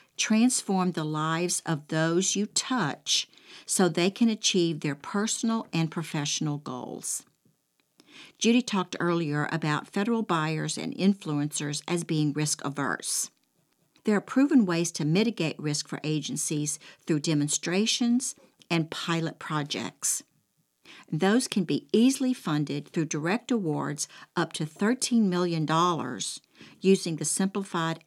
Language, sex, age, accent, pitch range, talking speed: English, female, 50-69, American, 150-205 Hz, 120 wpm